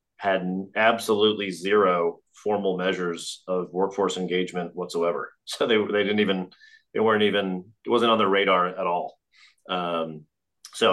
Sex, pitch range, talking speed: male, 90-105 Hz, 145 wpm